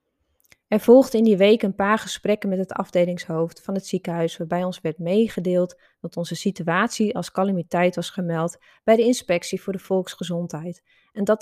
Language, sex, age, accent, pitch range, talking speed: Dutch, female, 20-39, Dutch, 175-215 Hz, 175 wpm